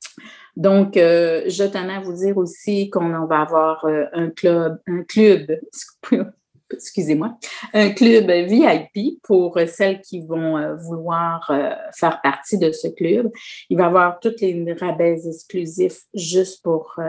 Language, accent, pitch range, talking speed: French, Canadian, 160-195 Hz, 145 wpm